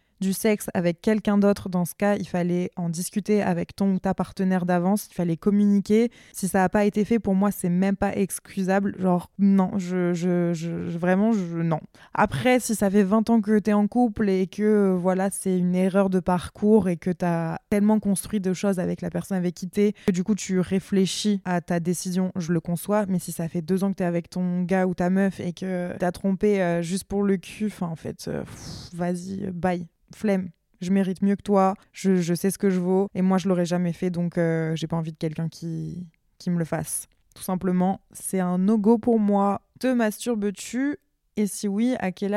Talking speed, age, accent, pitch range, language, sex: 220 wpm, 20-39, French, 180-205 Hz, French, female